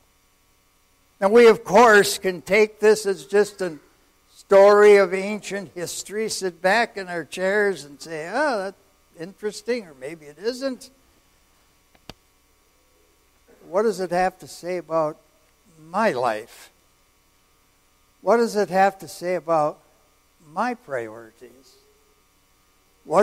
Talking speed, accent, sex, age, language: 120 wpm, American, male, 60-79, English